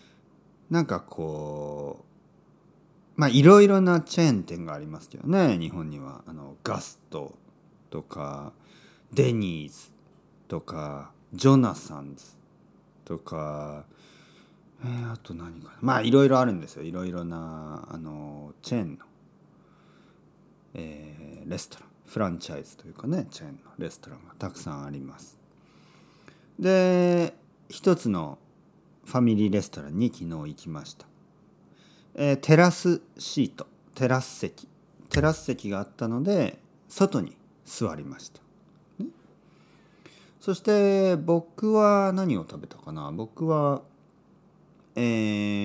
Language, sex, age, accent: Japanese, male, 40-59, native